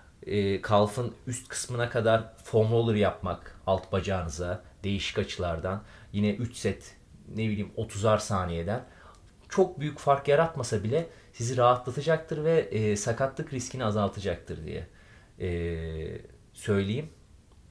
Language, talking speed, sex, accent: Turkish, 115 wpm, male, native